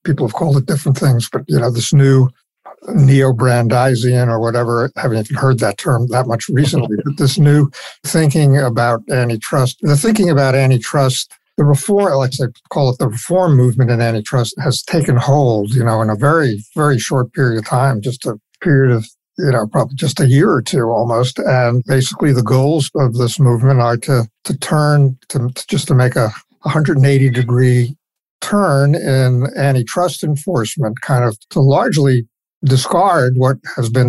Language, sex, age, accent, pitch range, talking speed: English, male, 50-69, American, 120-145 Hz, 180 wpm